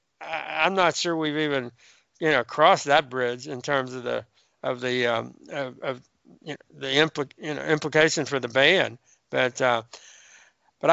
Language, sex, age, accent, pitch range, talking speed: English, male, 60-79, American, 135-155 Hz, 175 wpm